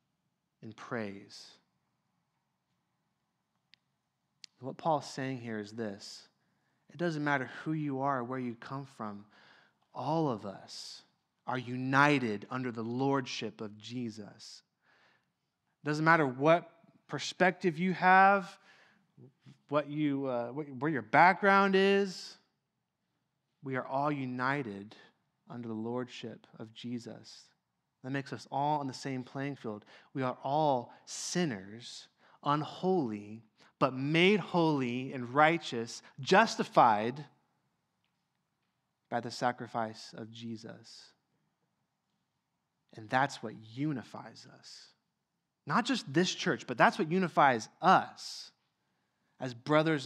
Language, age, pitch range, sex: English, 20-39, 120-160 Hz, male